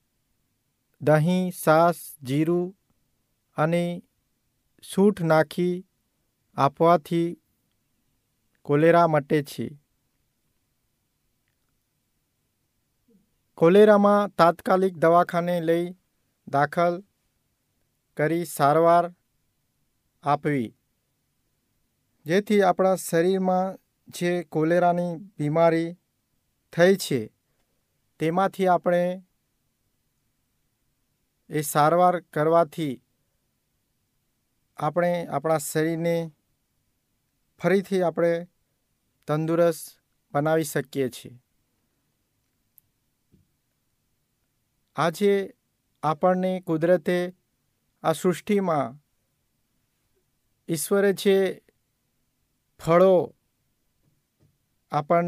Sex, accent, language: male, native, Hindi